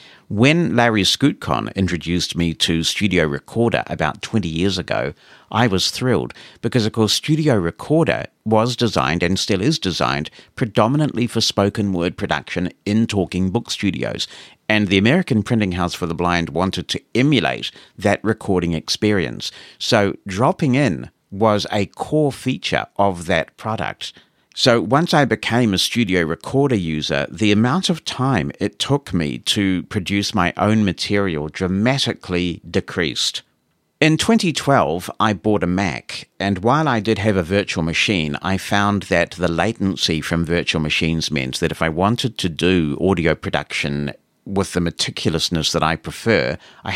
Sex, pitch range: male, 85-110 Hz